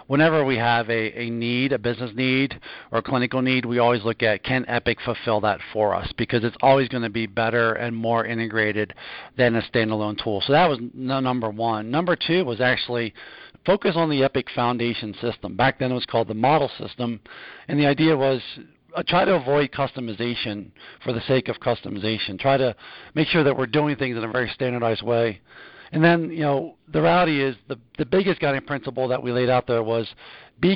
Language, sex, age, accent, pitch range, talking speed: English, male, 50-69, American, 115-140 Hz, 205 wpm